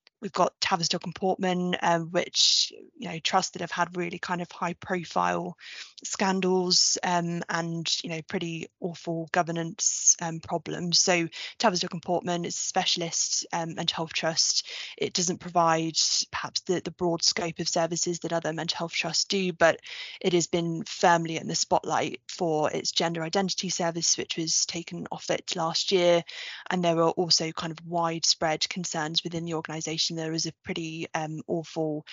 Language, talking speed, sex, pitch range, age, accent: English, 170 wpm, female, 165-185 Hz, 20-39, British